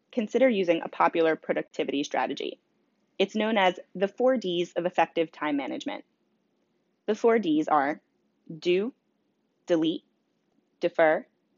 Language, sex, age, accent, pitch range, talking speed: English, female, 20-39, American, 165-245 Hz, 120 wpm